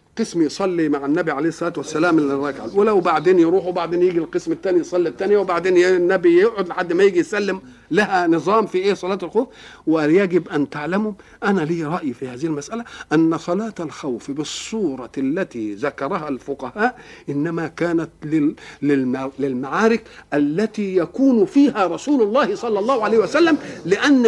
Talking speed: 145 wpm